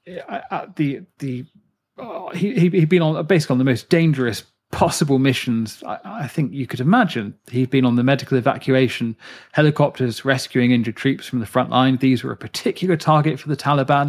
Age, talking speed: 40-59, 185 wpm